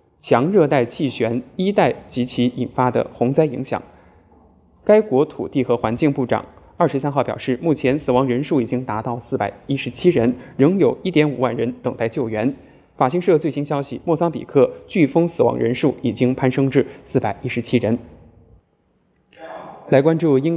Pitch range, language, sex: 120-150 Hz, Chinese, male